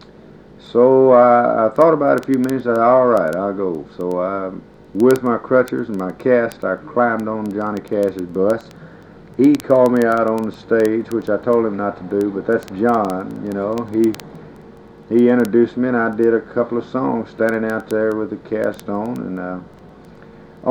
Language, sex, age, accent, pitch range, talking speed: English, male, 50-69, American, 105-125 Hz, 200 wpm